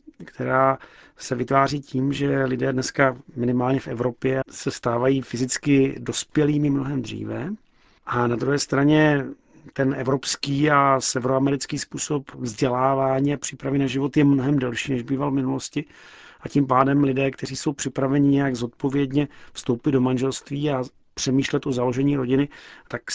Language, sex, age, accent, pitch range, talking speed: Czech, male, 40-59, native, 130-140 Hz, 145 wpm